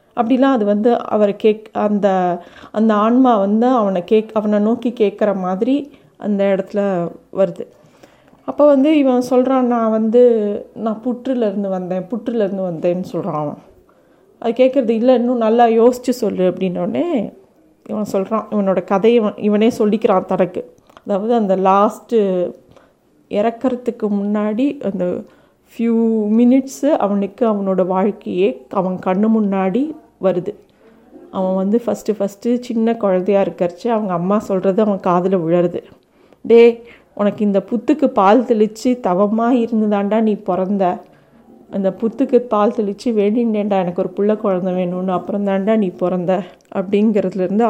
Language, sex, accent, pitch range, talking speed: Tamil, female, native, 195-240 Hz, 125 wpm